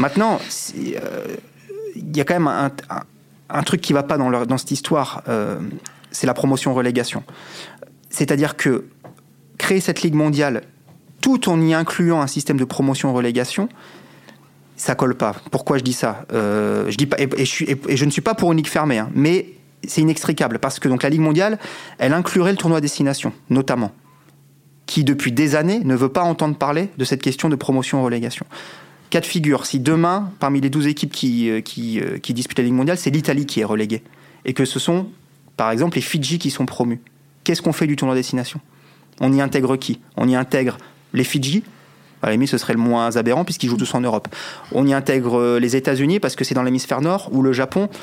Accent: French